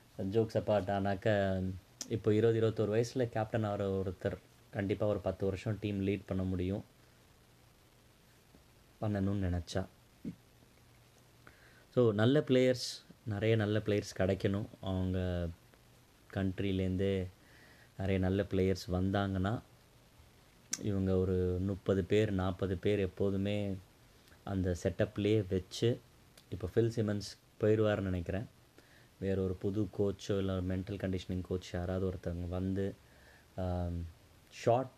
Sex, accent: male, native